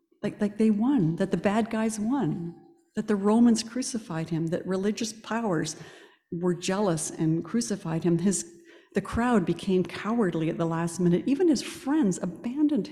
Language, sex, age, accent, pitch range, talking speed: English, female, 50-69, American, 175-290 Hz, 165 wpm